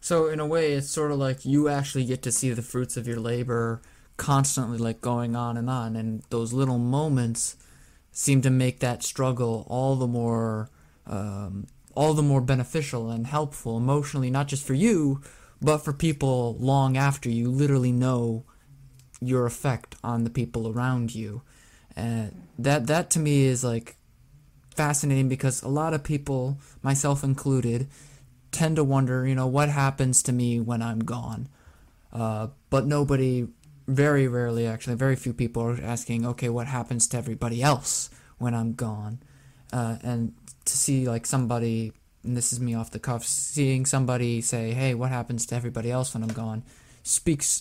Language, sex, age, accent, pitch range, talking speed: English, male, 20-39, American, 115-135 Hz, 175 wpm